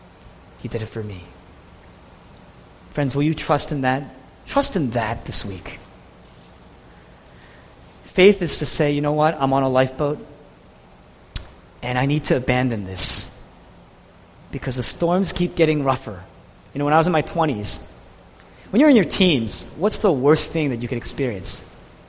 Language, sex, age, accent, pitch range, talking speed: English, male, 30-49, American, 120-165 Hz, 165 wpm